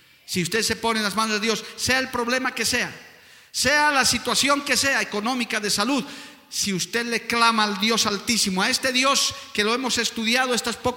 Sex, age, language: male, 50-69, Spanish